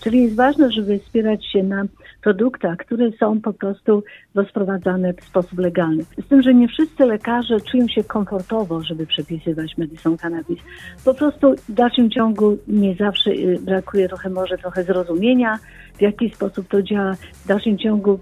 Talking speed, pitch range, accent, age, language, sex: 160 wpm, 180-225 Hz, native, 50-69, Polish, female